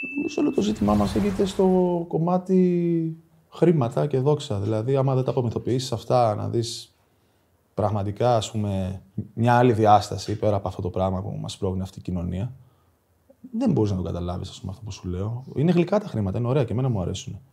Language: Greek